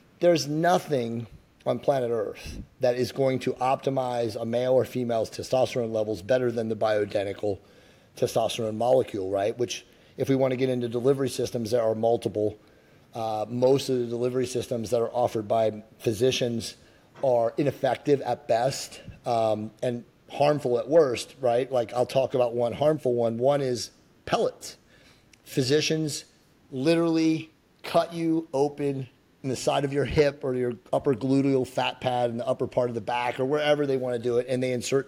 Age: 30-49